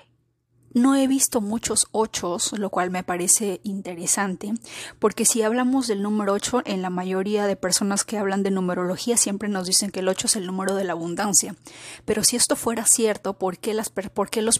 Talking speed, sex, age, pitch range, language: 195 wpm, female, 30-49, 190-225 Hz, Spanish